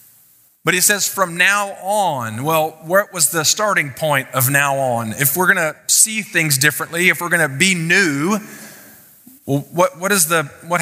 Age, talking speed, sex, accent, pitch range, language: 30-49, 190 wpm, male, American, 145-180 Hz, English